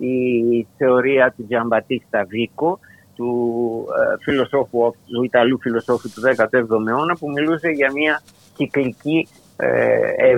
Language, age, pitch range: Greek, 50-69, 130-185 Hz